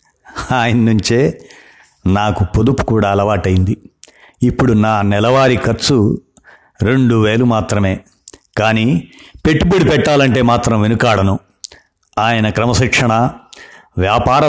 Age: 60-79